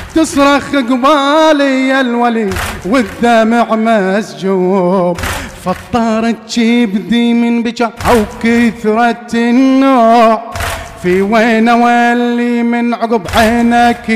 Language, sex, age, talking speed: Arabic, male, 30-49, 75 wpm